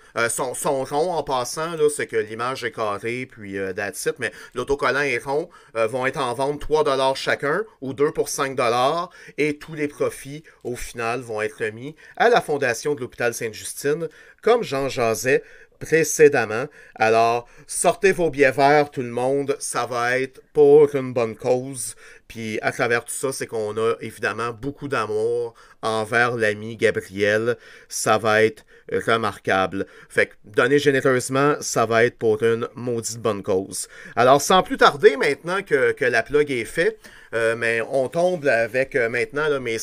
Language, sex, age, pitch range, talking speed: French, male, 30-49, 120-195 Hz, 170 wpm